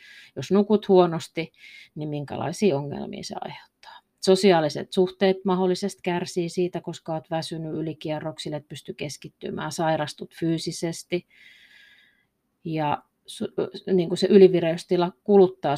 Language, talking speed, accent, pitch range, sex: Finnish, 105 wpm, native, 155-200 Hz, female